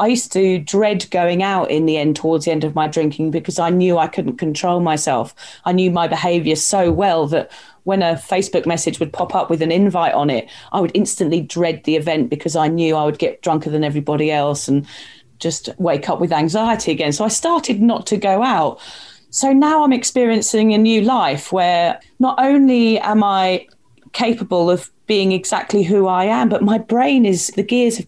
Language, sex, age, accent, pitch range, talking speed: English, female, 30-49, British, 175-225 Hz, 205 wpm